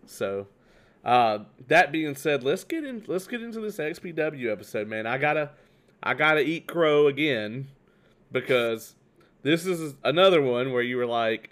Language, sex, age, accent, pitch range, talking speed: English, male, 30-49, American, 115-145 Hz, 160 wpm